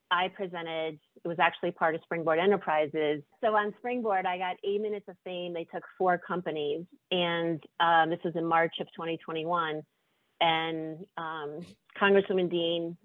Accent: American